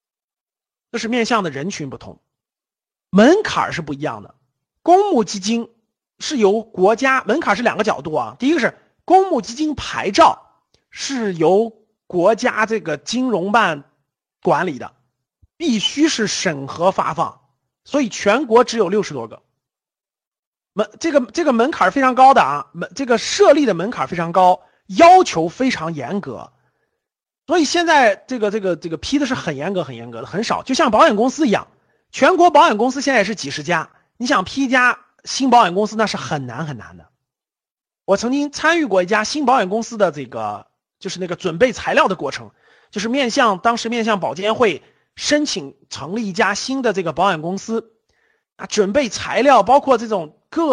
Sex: male